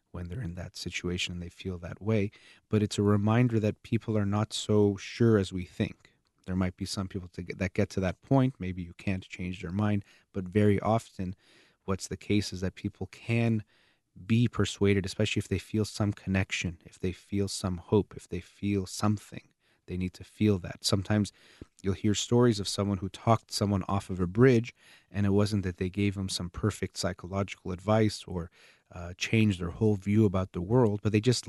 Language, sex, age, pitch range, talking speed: English, male, 30-49, 95-105 Hz, 205 wpm